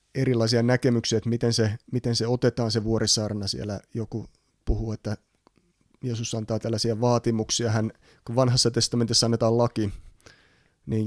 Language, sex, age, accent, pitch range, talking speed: Finnish, male, 30-49, native, 105-120 Hz, 135 wpm